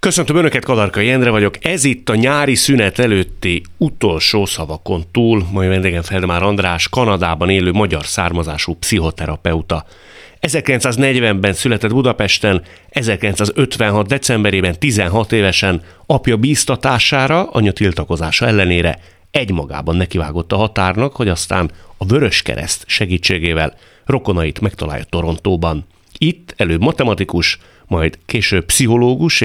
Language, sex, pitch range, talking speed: Hungarian, male, 85-115 Hz, 110 wpm